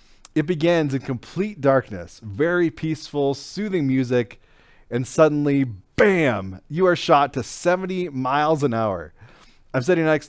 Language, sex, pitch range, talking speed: English, male, 120-150 Hz, 135 wpm